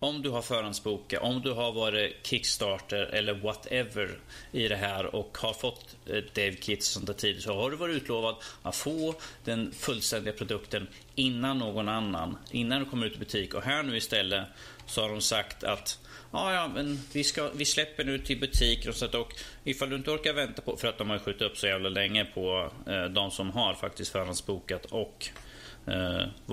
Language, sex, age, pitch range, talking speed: Swedish, male, 30-49, 105-140 Hz, 195 wpm